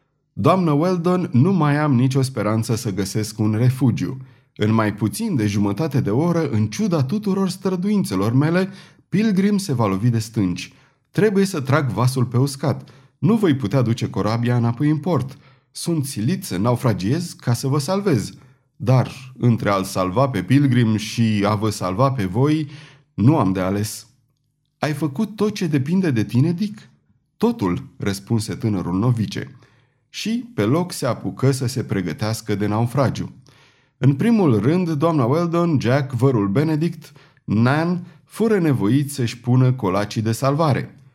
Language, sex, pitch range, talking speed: Romanian, male, 115-155 Hz, 155 wpm